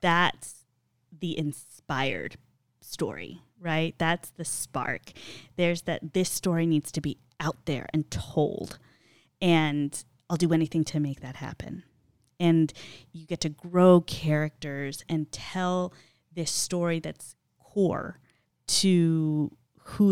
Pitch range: 140-180 Hz